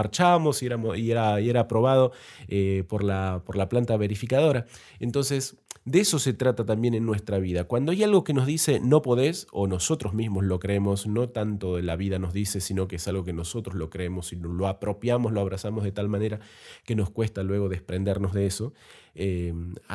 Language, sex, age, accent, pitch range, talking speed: Spanish, male, 30-49, Argentinian, 100-135 Hz, 195 wpm